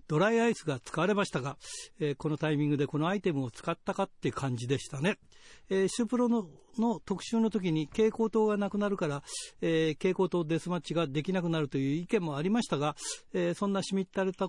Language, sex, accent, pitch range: Japanese, male, native, 145-195 Hz